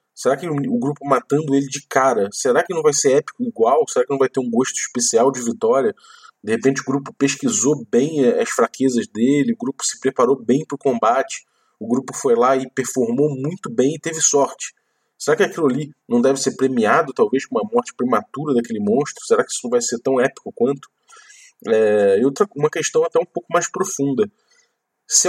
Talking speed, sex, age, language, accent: 205 wpm, male, 20-39, Portuguese, Brazilian